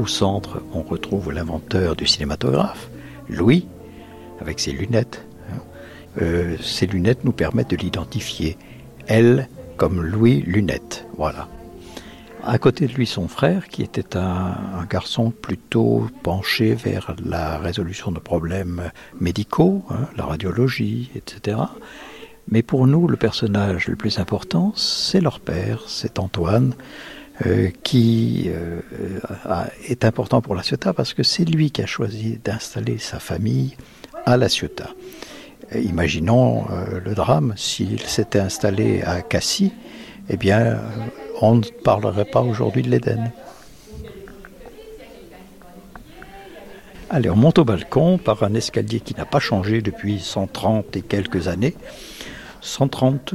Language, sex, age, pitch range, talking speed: French, male, 60-79, 95-130 Hz, 130 wpm